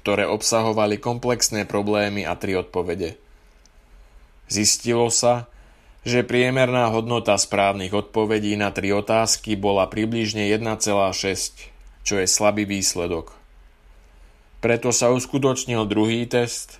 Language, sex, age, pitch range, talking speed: Slovak, male, 20-39, 95-115 Hz, 105 wpm